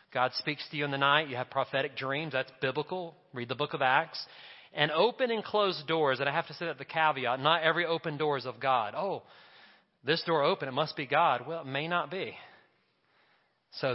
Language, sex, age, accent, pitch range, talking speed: English, male, 40-59, American, 140-185 Hz, 225 wpm